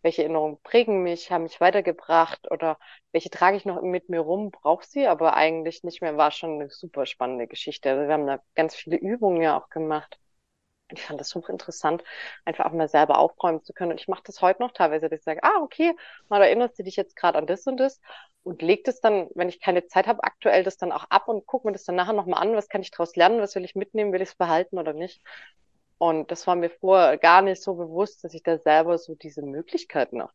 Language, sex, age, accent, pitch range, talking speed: German, female, 20-39, German, 155-195 Hz, 245 wpm